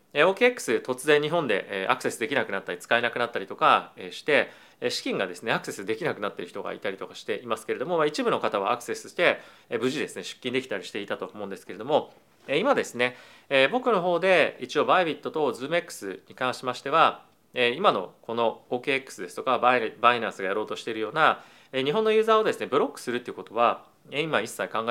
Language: Japanese